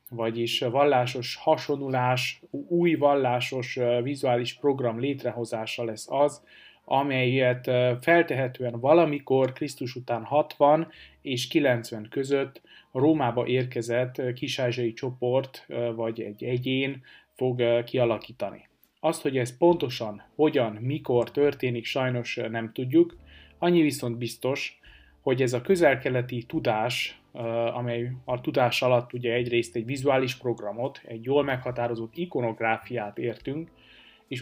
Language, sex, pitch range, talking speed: Hungarian, male, 120-140 Hz, 105 wpm